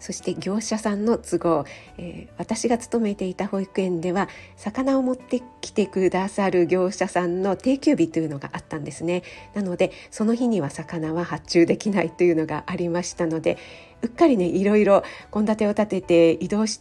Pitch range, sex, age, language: 165-215 Hz, female, 50-69, Japanese